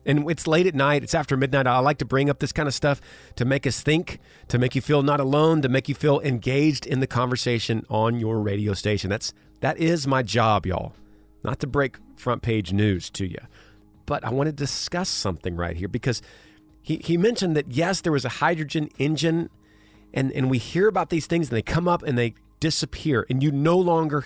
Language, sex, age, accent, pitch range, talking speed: English, male, 40-59, American, 105-150 Hz, 225 wpm